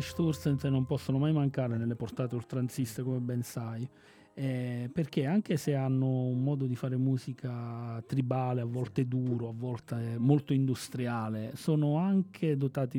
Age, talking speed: 40-59, 145 wpm